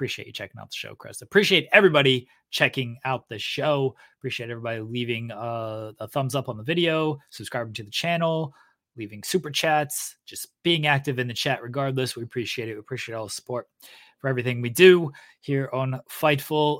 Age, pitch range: 20-39, 120-155 Hz